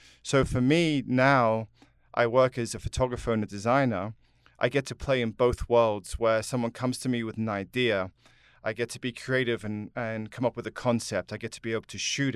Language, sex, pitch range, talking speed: English, male, 110-130 Hz, 225 wpm